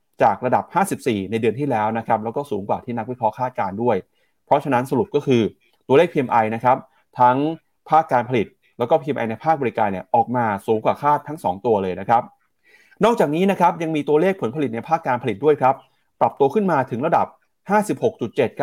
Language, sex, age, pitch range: Thai, male, 30-49, 115-160 Hz